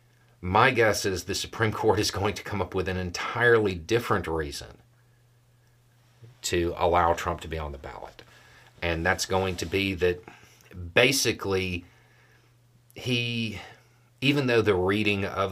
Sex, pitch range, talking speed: male, 85-120 Hz, 145 wpm